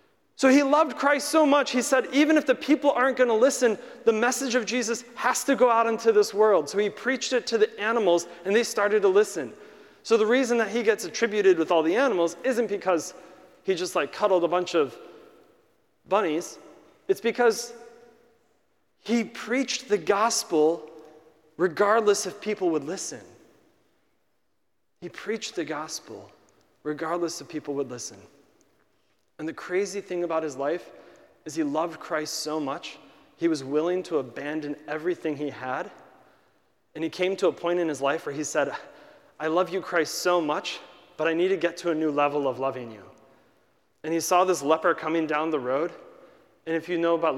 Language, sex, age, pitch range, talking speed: English, male, 40-59, 155-230 Hz, 185 wpm